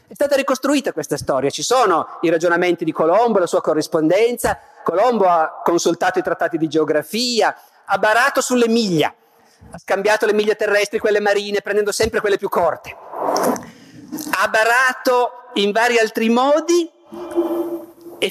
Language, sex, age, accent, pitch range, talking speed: Italian, male, 50-69, native, 175-280 Hz, 140 wpm